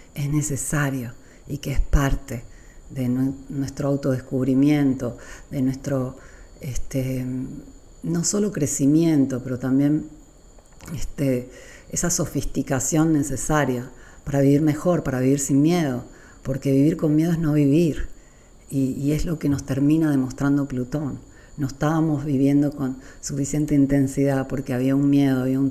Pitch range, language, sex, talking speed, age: 130-145 Hz, Spanish, female, 125 wpm, 40-59